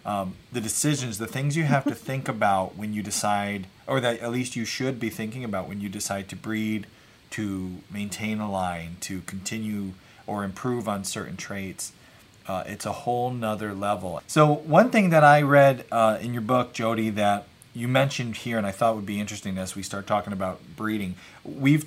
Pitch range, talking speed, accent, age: 100-125 Hz, 195 wpm, American, 30-49